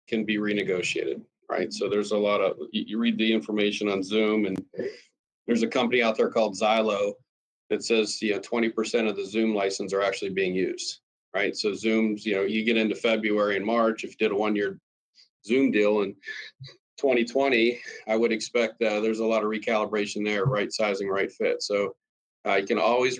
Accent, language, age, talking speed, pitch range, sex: American, English, 40-59, 195 wpm, 105-130 Hz, male